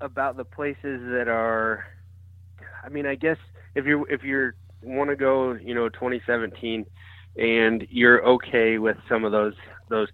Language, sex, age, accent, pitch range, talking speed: English, male, 20-39, American, 100-120 Hz, 160 wpm